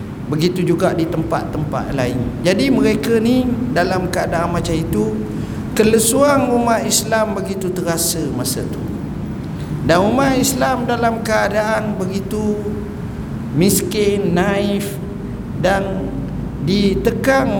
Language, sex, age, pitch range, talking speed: Malay, male, 50-69, 170-220 Hz, 100 wpm